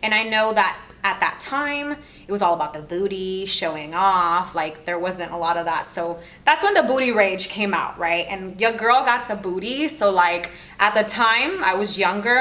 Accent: American